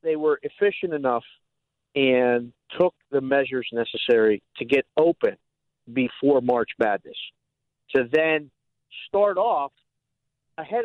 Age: 50-69